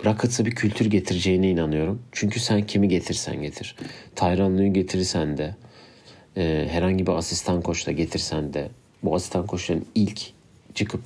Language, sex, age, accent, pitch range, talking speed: Turkish, male, 40-59, native, 90-110 Hz, 135 wpm